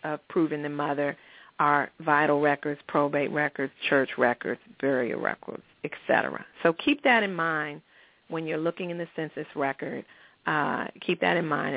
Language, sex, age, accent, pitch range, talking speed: English, female, 40-59, American, 165-215 Hz, 160 wpm